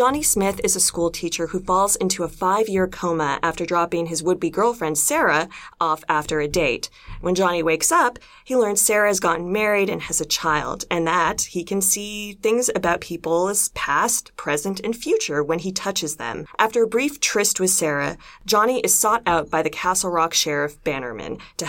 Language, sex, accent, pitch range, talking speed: English, female, American, 165-210 Hz, 190 wpm